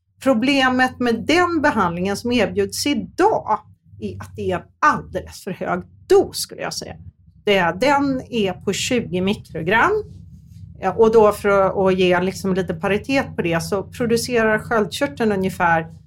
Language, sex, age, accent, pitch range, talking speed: Swedish, female, 40-59, native, 175-255 Hz, 140 wpm